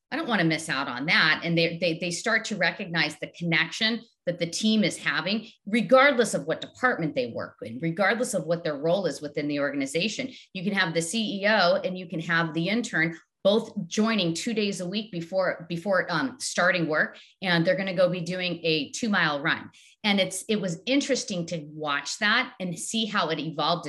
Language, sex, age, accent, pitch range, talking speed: English, female, 40-59, American, 165-220 Hz, 210 wpm